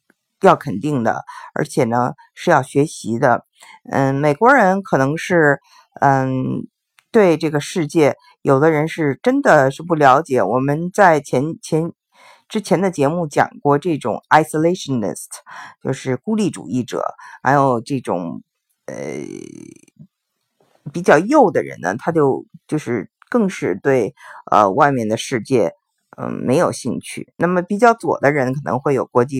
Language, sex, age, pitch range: Chinese, female, 50-69, 135-190 Hz